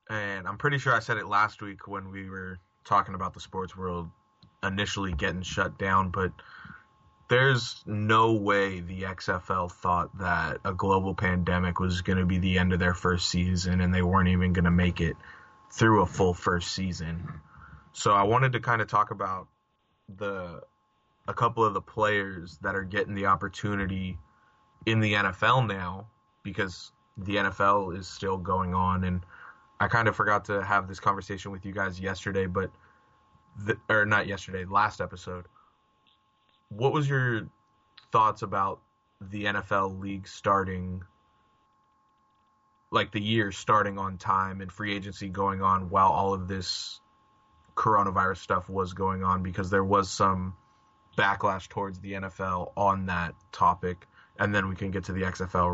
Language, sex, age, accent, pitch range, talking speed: English, male, 20-39, American, 90-105 Hz, 165 wpm